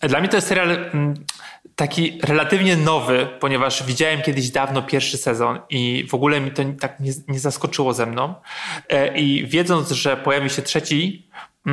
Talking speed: 155 wpm